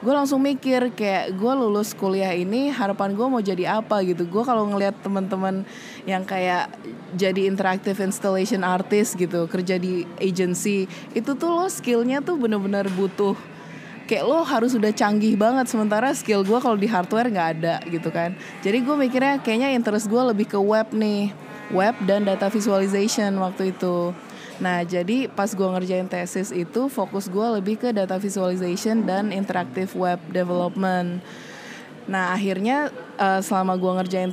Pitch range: 185-225 Hz